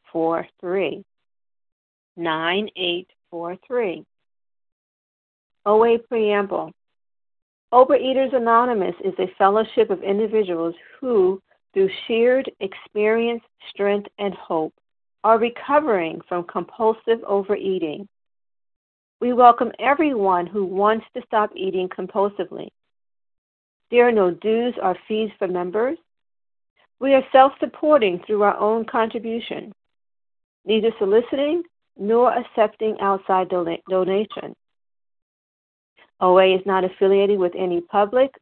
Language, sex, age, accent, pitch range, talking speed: English, female, 50-69, American, 185-235 Hz, 90 wpm